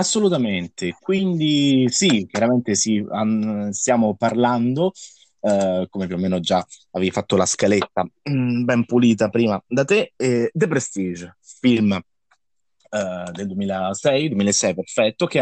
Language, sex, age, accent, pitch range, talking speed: Italian, male, 30-49, native, 95-115 Hz, 130 wpm